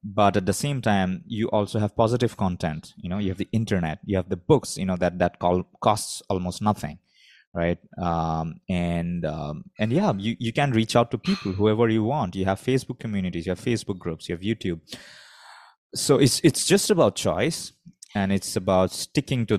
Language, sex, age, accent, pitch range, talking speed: English, male, 20-39, Indian, 95-120 Hz, 200 wpm